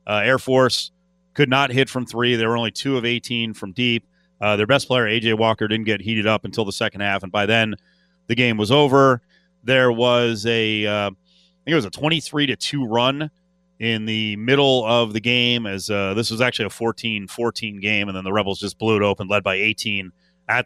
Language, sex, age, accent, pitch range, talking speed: English, male, 30-49, American, 110-145 Hz, 225 wpm